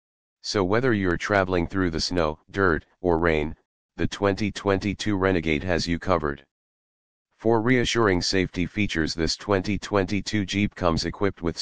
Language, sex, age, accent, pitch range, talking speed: English, male, 40-59, American, 85-100 Hz, 135 wpm